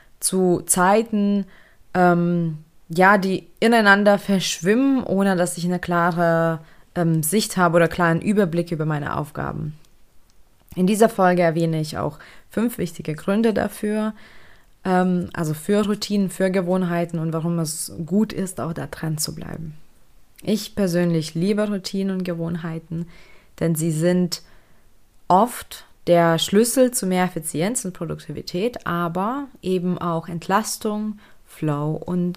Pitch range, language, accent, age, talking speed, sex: 165-205 Hz, German, German, 20-39, 130 wpm, female